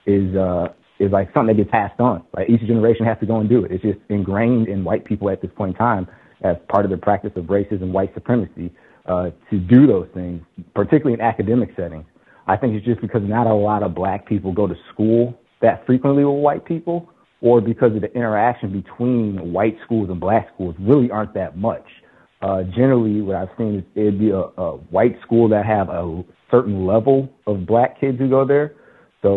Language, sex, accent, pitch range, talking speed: English, male, American, 95-115 Hz, 215 wpm